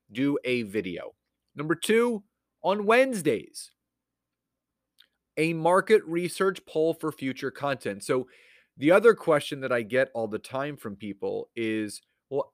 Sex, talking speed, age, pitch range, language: male, 135 wpm, 30-49, 120-165 Hz, English